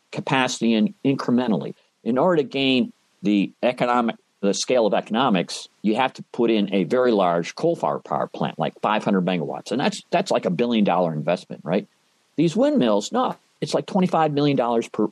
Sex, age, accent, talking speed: male, 50-69, American, 170 wpm